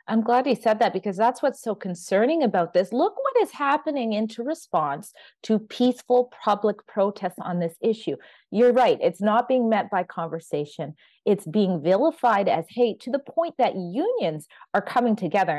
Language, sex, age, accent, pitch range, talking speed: English, female, 30-49, American, 170-230 Hz, 175 wpm